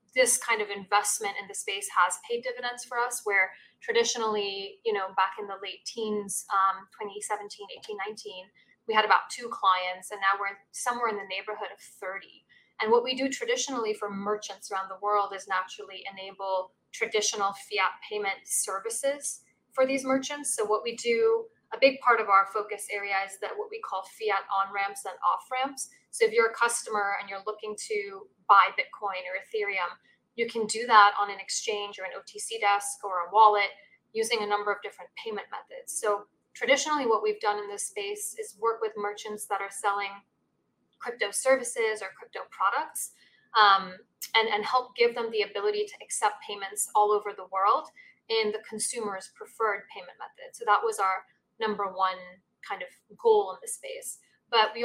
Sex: female